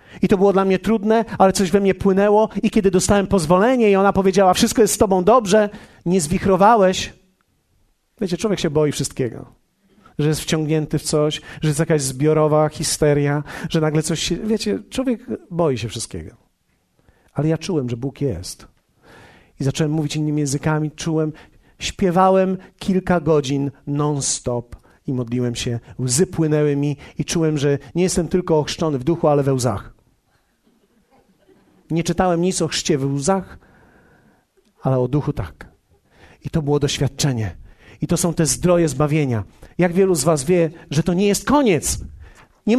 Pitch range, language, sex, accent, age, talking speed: 140-195 Hz, Polish, male, native, 40-59, 160 wpm